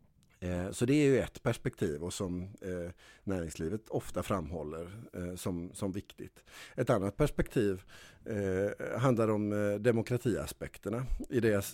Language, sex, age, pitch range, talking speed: Swedish, male, 50-69, 95-120 Hz, 110 wpm